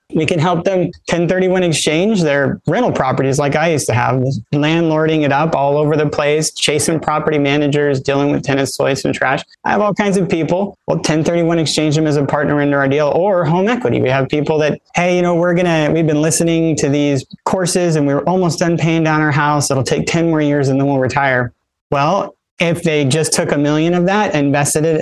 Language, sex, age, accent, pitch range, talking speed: English, male, 30-49, American, 145-175 Hz, 230 wpm